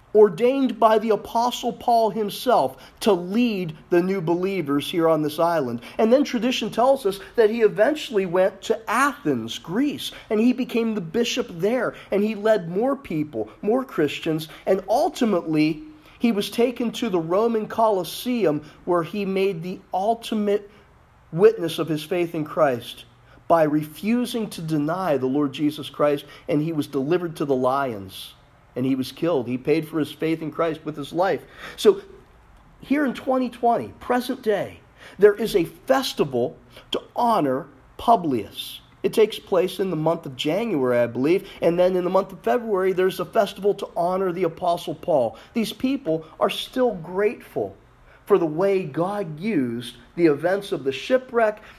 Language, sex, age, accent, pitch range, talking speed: English, male, 40-59, American, 155-220 Hz, 165 wpm